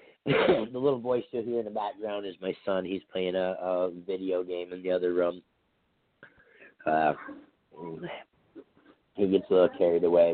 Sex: male